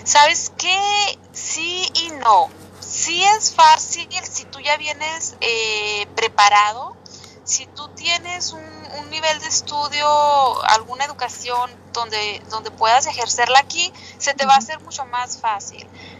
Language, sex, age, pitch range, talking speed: Spanish, female, 30-49, 230-295 Hz, 135 wpm